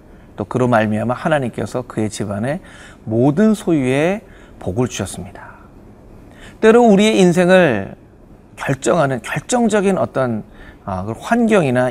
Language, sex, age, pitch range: Korean, male, 40-59, 110-180 Hz